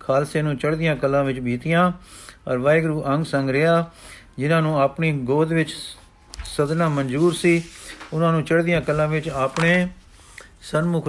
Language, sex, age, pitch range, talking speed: Punjabi, male, 50-69, 140-165 Hz, 135 wpm